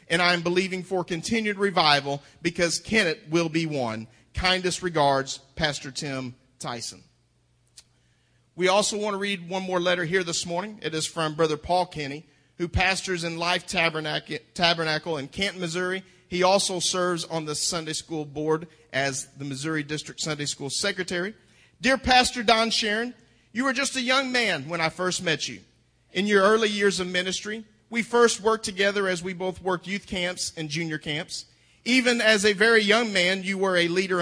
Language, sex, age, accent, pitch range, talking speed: English, male, 40-59, American, 160-215 Hz, 175 wpm